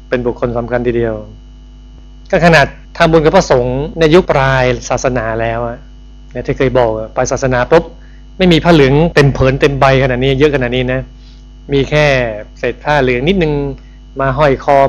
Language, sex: Thai, male